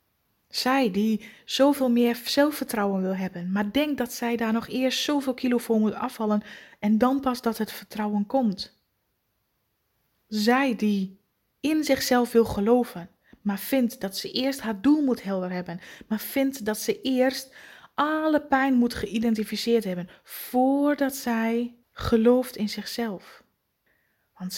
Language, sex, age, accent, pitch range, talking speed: Dutch, female, 20-39, Dutch, 210-250 Hz, 140 wpm